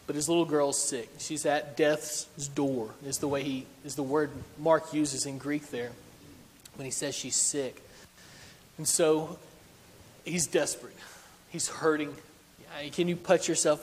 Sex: male